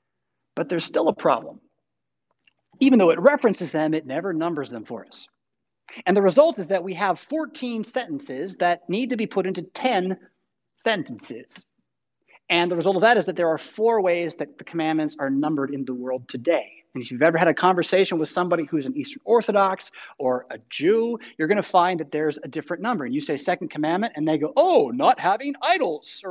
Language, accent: English, American